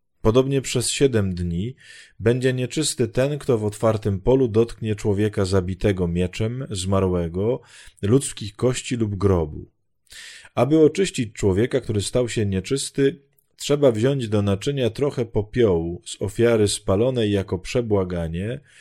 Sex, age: male, 20-39